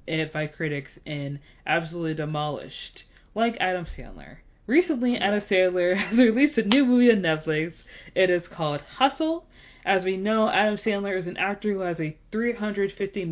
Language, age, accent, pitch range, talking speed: English, 20-39, American, 155-215 Hz, 160 wpm